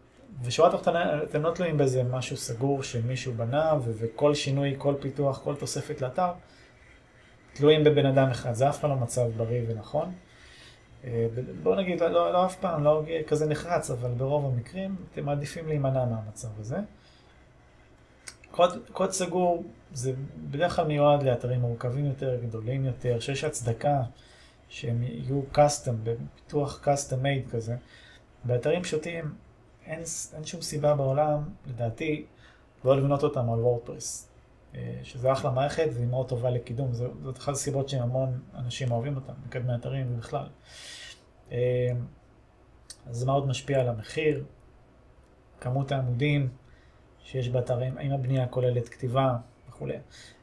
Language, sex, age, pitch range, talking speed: Hebrew, male, 30-49, 120-145 Hz, 135 wpm